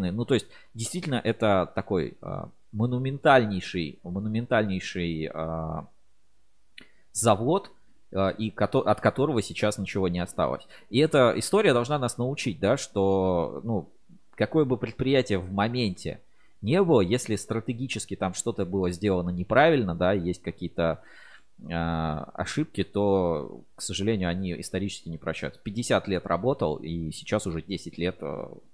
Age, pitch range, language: 20-39, 90-115 Hz, Russian